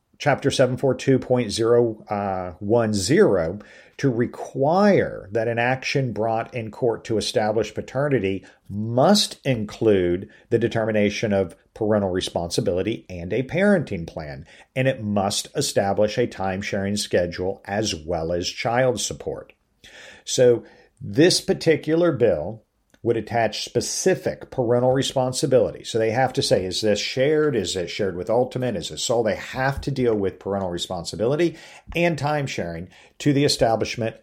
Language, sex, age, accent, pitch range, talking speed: English, male, 50-69, American, 100-130 Hz, 130 wpm